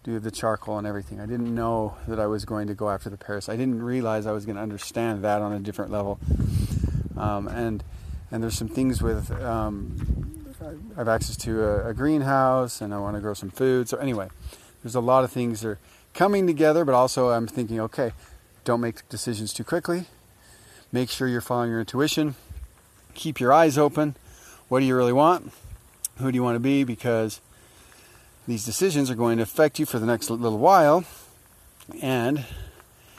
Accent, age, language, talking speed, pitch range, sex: American, 30-49, English, 190 wpm, 105-125 Hz, male